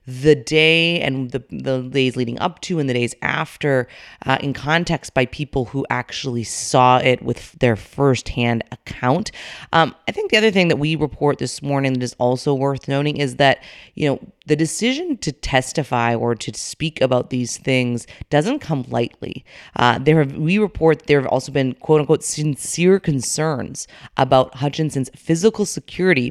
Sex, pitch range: female, 125-155 Hz